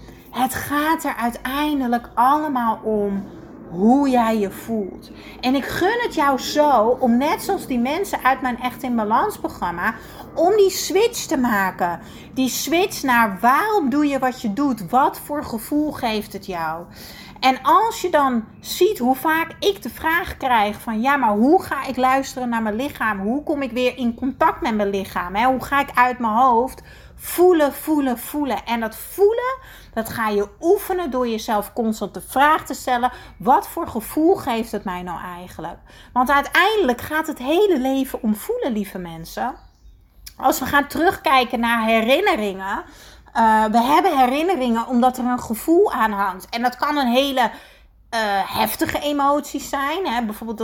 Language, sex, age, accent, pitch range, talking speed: Dutch, female, 30-49, Dutch, 225-295 Hz, 170 wpm